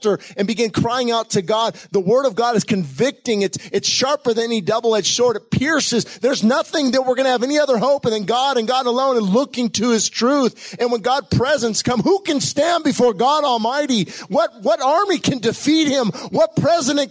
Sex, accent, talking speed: male, American, 210 wpm